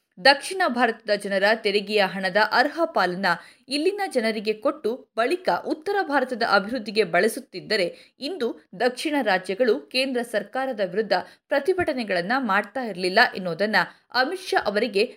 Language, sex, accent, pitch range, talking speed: Kannada, female, native, 210-305 Hz, 110 wpm